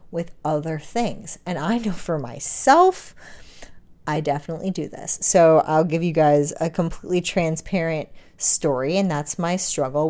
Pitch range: 150-200 Hz